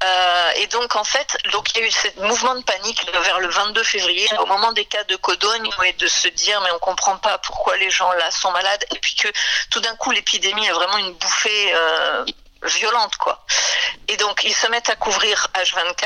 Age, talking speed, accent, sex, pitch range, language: 50-69, 230 wpm, French, female, 185-230 Hz, French